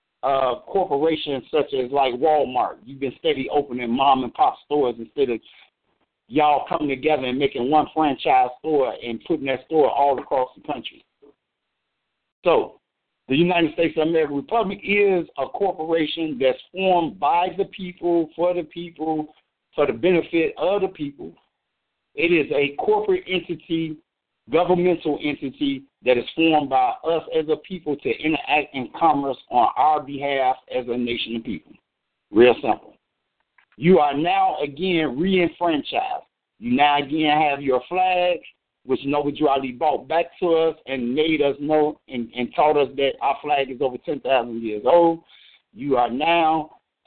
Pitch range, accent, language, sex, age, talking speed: 135-175 Hz, American, English, male, 60-79, 155 wpm